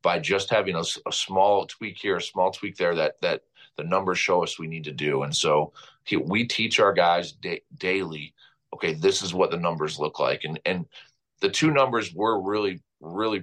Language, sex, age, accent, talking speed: English, male, 40-59, American, 200 wpm